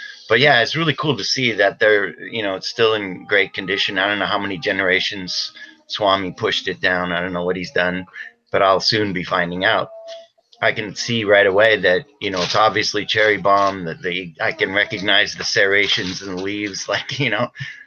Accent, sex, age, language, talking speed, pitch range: American, male, 30-49, English, 210 wpm, 95-130 Hz